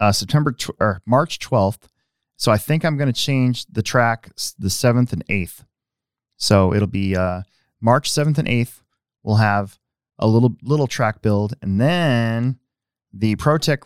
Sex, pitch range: male, 100-130 Hz